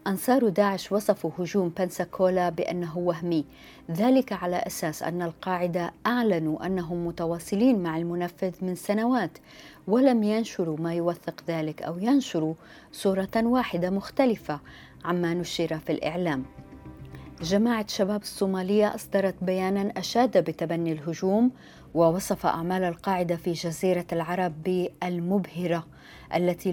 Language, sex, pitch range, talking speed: Arabic, female, 170-200 Hz, 110 wpm